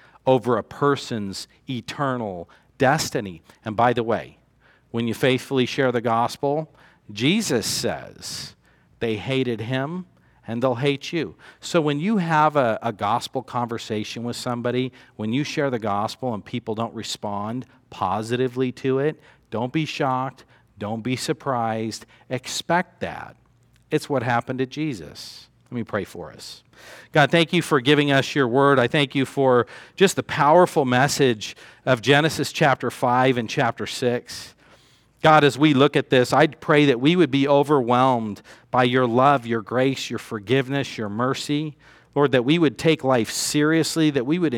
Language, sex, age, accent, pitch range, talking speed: English, male, 50-69, American, 120-145 Hz, 160 wpm